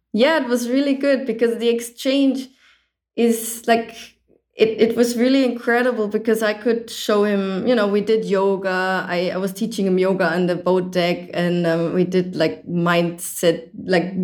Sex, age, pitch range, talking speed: female, 20-39, 165-210 Hz, 175 wpm